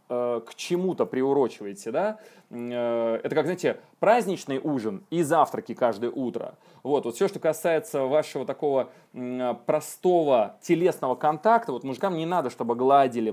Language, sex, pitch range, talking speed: Russian, male, 120-155 Hz, 130 wpm